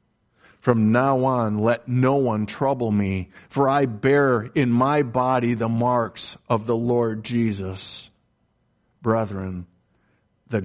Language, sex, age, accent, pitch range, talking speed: English, male, 50-69, American, 100-120 Hz, 125 wpm